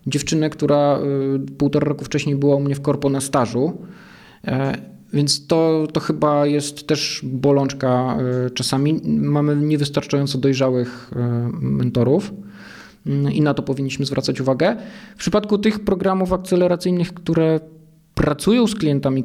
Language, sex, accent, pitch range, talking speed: Polish, male, native, 135-160 Hz, 120 wpm